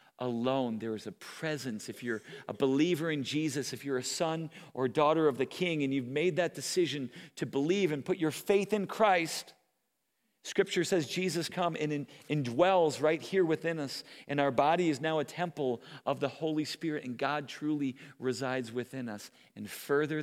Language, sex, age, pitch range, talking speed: English, male, 40-59, 130-160 Hz, 185 wpm